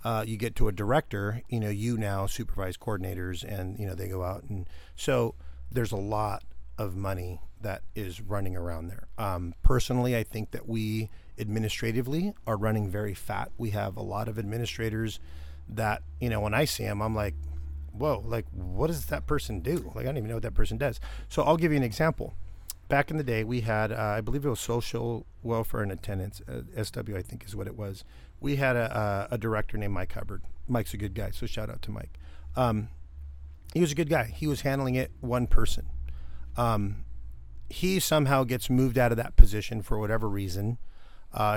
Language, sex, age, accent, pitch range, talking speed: English, male, 40-59, American, 95-120 Hz, 210 wpm